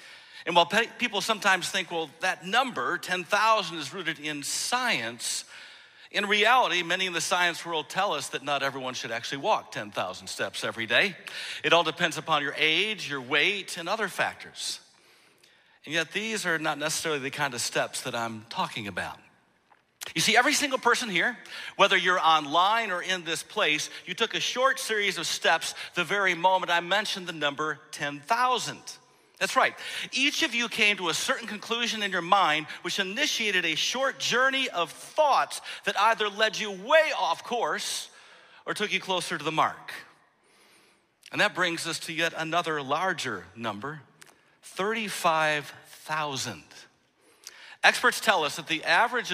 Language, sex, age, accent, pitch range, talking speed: English, male, 50-69, American, 155-215 Hz, 165 wpm